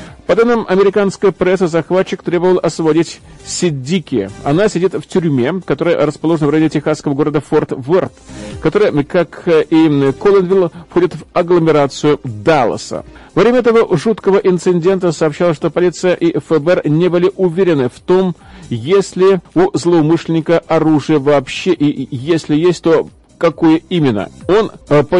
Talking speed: 135 wpm